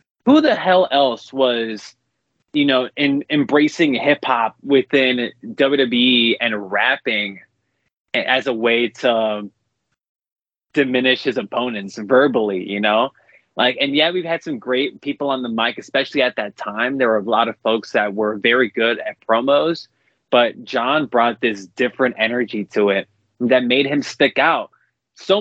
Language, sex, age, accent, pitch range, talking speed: English, male, 20-39, American, 120-155 Hz, 155 wpm